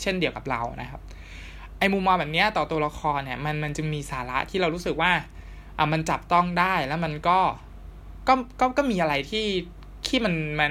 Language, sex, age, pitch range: Thai, male, 20-39, 130-165 Hz